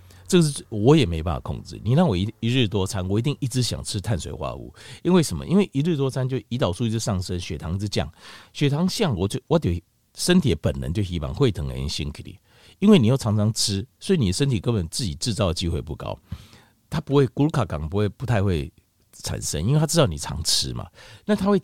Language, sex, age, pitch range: Chinese, male, 50-69, 95-130 Hz